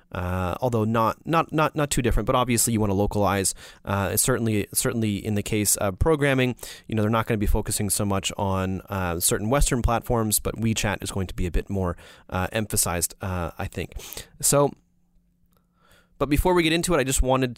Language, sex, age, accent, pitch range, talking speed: English, male, 30-49, American, 100-130 Hz, 210 wpm